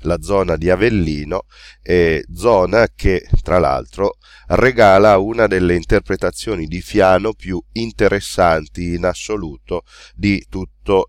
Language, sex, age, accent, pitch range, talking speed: Italian, male, 30-49, native, 80-100 Hz, 115 wpm